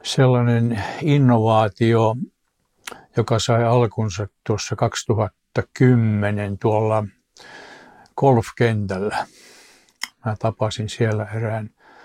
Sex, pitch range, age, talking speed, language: male, 110-125 Hz, 60-79, 65 wpm, Finnish